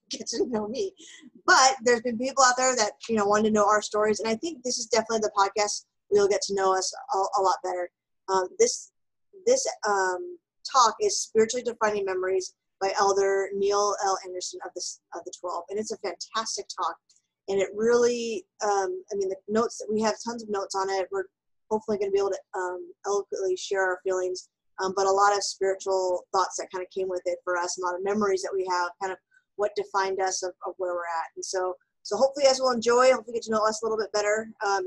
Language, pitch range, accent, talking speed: English, 190-225 Hz, American, 235 wpm